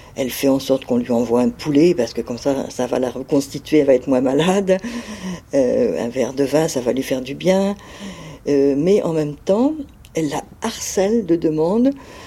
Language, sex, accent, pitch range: French, female, French, 145-200 Hz